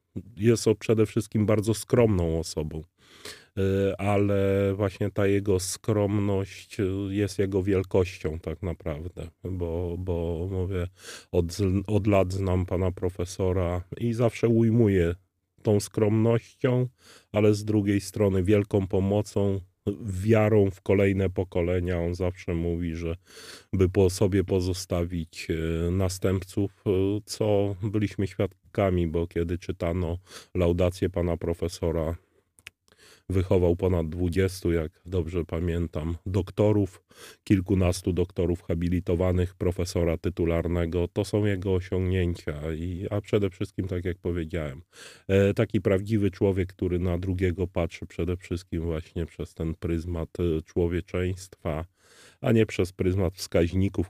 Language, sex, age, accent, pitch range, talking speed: Polish, male, 30-49, native, 85-100 Hz, 110 wpm